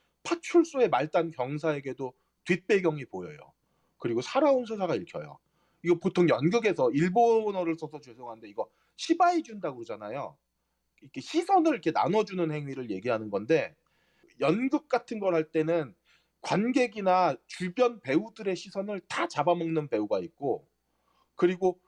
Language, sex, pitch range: Korean, male, 160-235 Hz